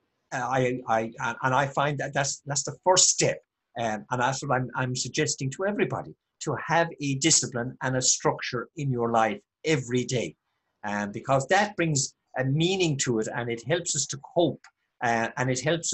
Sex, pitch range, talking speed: male, 125-165 Hz, 190 wpm